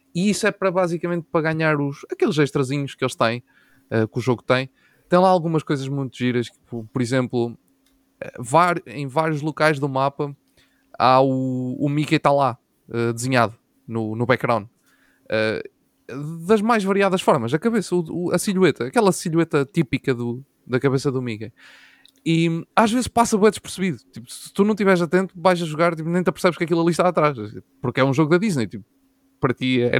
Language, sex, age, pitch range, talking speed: Portuguese, male, 20-39, 135-175 Hz, 200 wpm